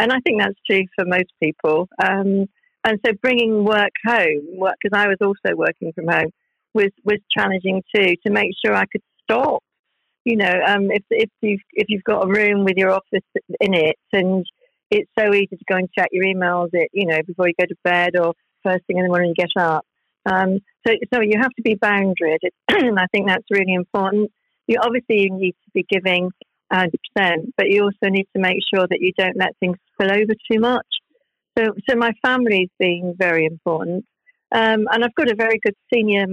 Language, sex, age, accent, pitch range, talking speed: English, female, 50-69, British, 185-220 Hz, 215 wpm